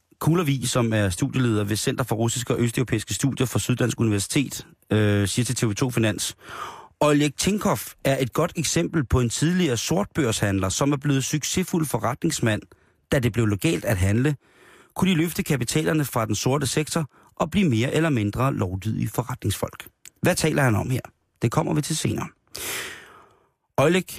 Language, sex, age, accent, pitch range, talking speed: Danish, male, 30-49, native, 105-135 Hz, 165 wpm